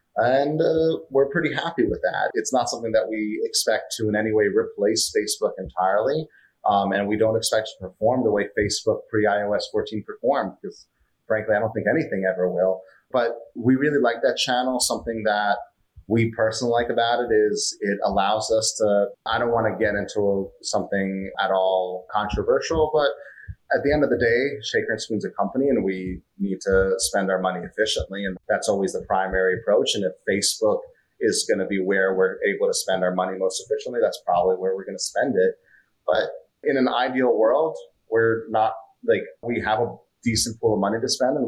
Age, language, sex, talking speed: 30-49, English, male, 200 wpm